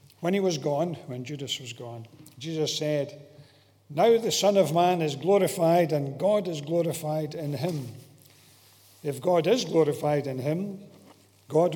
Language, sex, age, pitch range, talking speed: English, male, 60-79, 120-165 Hz, 155 wpm